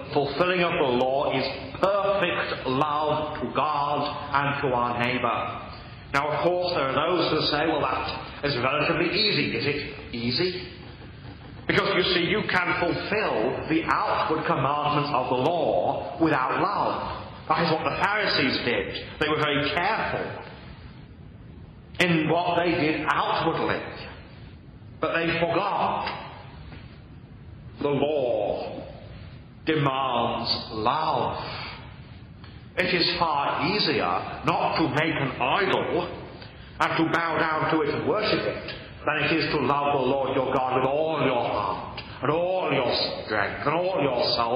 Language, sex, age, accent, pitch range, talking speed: English, male, 40-59, British, 125-165 Hz, 140 wpm